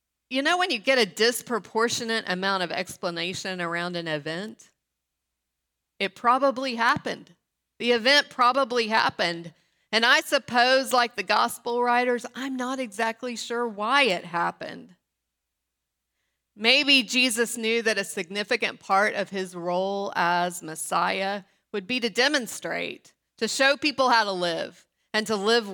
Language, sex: English, female